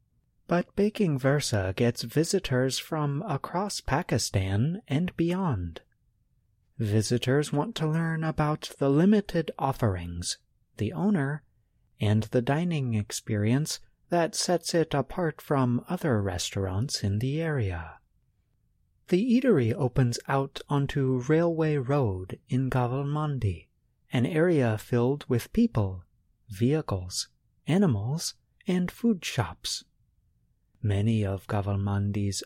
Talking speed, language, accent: 105 wpm, English, American